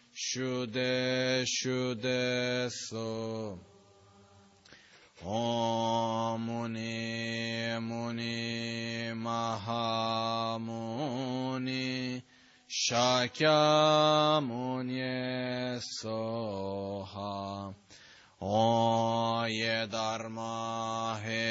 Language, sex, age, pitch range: Italian, male, 20-39, 110-125 Hz